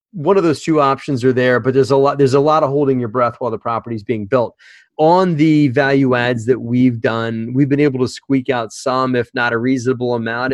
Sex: male